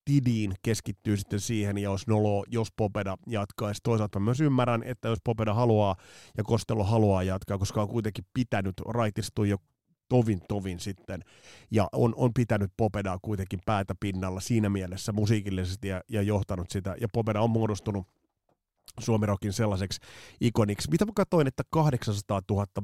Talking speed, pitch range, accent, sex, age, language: 155 wpm, 100-120 Hz, native, male, 30-49, Finnish